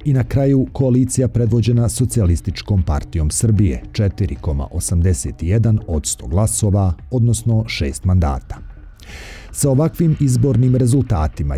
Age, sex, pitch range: 50-69, male, 90-120 Hz